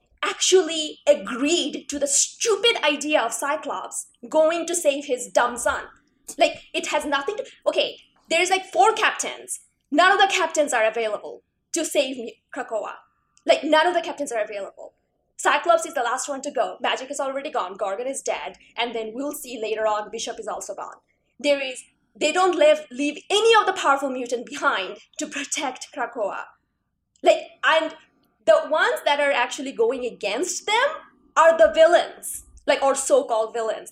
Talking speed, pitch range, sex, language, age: 170 wpm, 245-330 Hz, female, English, 20-39